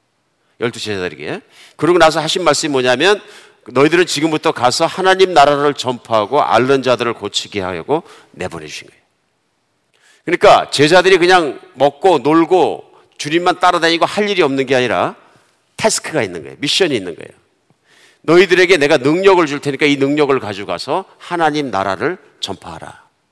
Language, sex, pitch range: Korean, male, 135-195 Hz